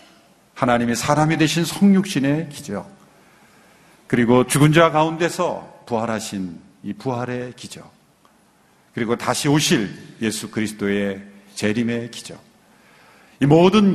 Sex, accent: male, native